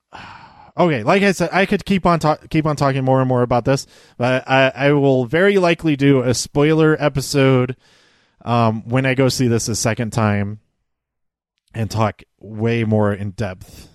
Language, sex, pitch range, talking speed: English, male, 110-145 Hz, 175 wpm